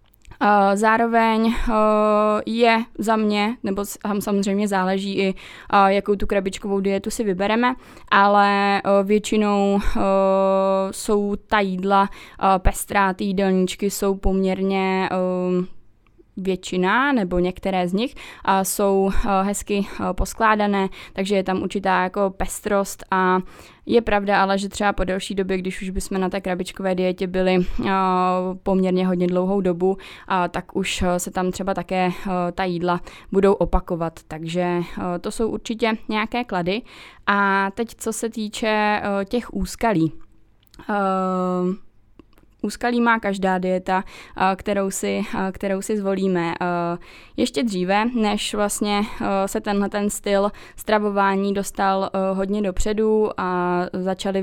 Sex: female